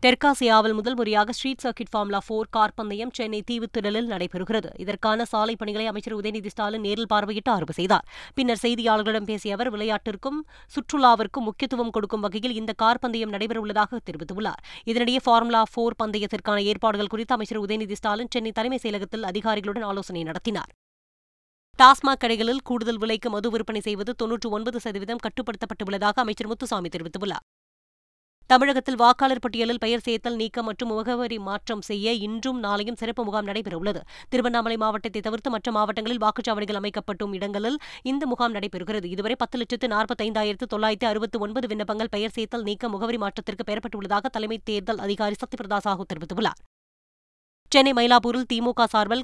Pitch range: 210-235 Hz